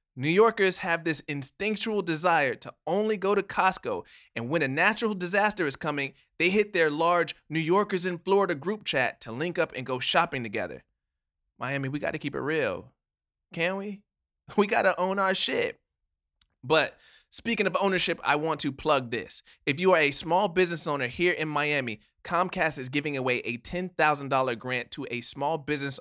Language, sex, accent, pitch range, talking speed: English, male, American, 140-180 Hz, 180 wpm